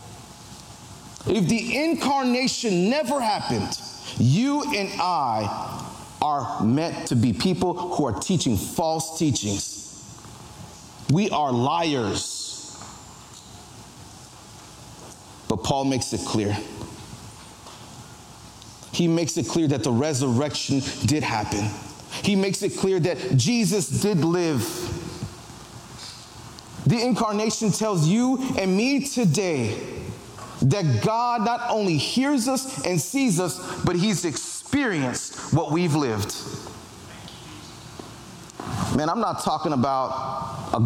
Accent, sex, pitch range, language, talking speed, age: American, male, 115-180 Hz, English, 105 wpm, 30-49